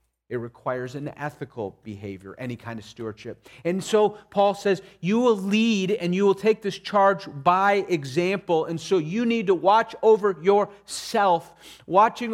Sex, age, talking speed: male, 40-59, 160 wpm